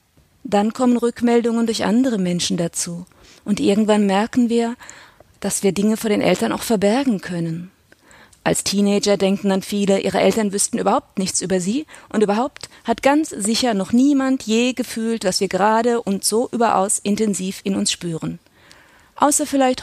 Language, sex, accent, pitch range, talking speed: German, female, German, 190-230 Hz, 160 wpm